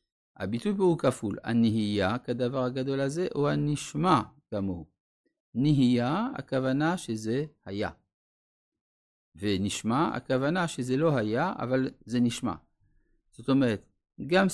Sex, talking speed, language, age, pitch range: male, 105 wpm, Hebrew, 50-69, 110-165 Hz